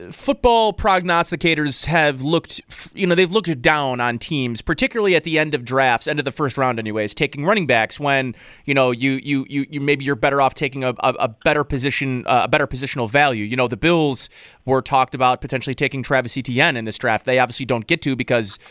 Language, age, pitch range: English, 30-49, 125-160 Hz